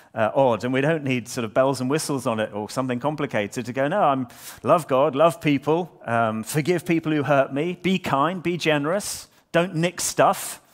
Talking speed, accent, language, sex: 205 wpm, British, English, male